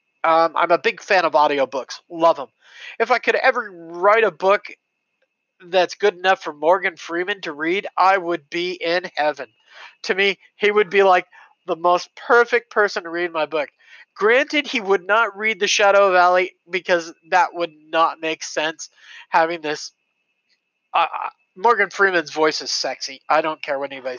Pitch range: 165-215 Hz